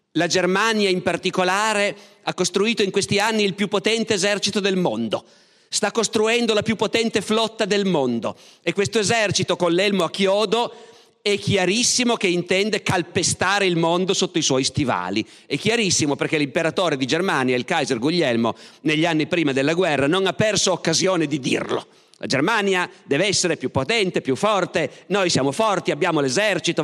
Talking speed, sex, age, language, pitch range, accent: 165 wpm, male, 40-59, Italian, 155-210 Hz, native